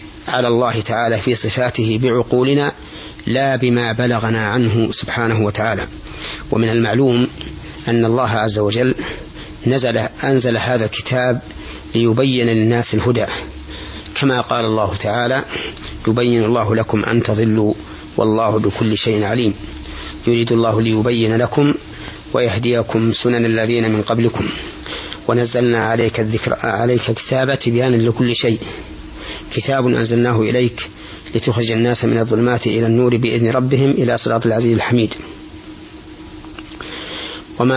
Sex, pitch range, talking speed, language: male, 110-125 Hz, 115 wpm, Arabic